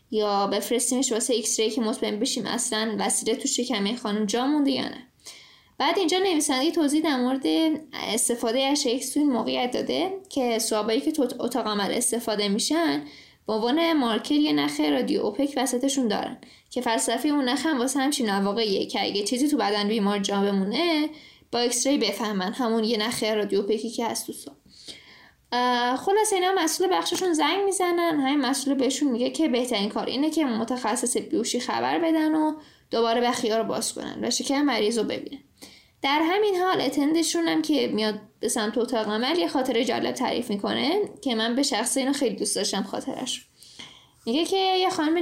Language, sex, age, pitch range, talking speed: Persian, female, 10-29, 225-300 Hz, 175 wpm